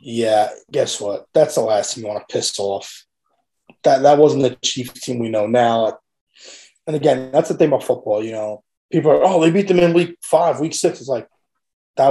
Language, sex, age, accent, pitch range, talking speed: English, male, 20-39, American, 125-165 Hz, 220 wpm